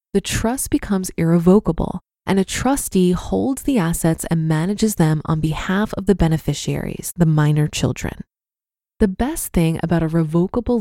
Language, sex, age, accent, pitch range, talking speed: English, female, 20-39, American, 165-220 Hz, 150 wpm